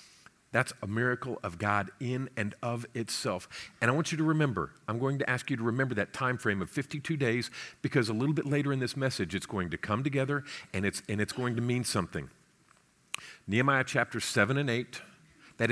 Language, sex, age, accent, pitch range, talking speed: English, male, 50-69, American, 110-140 Hz, 210 wpm